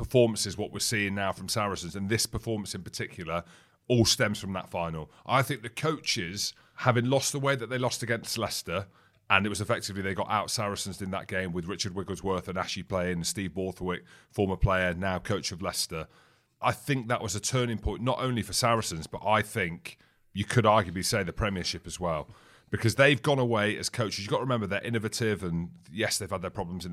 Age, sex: 30-49, male